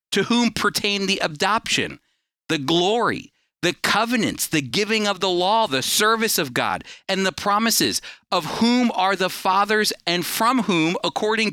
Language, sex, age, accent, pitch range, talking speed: English, male, 40-59, American, 155-210 Hz, 155 wpm